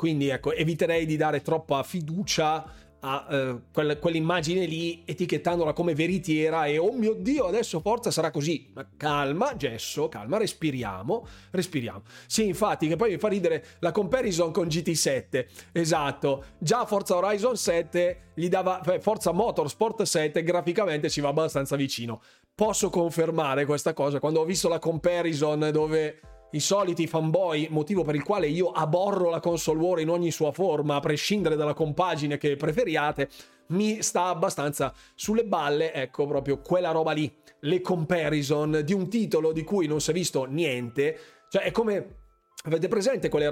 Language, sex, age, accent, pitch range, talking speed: Italian, male, 30-49, native, 150-180 Hz, 155 wpm